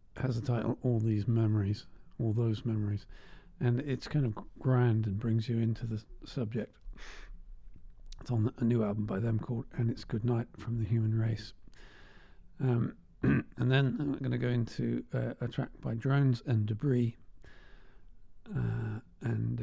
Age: 50-69